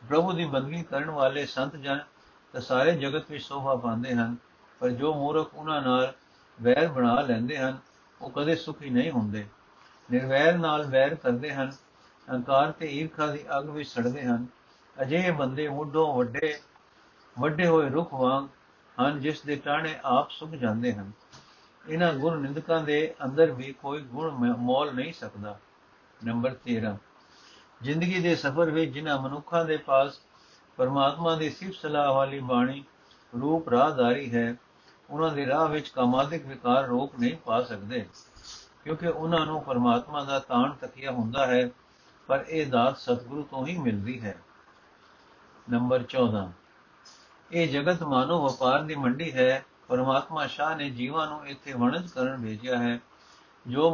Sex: male